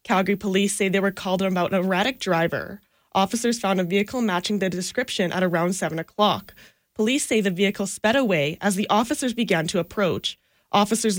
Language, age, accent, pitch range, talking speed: English, 10-29, American, 185-215 Hz, 180 wpm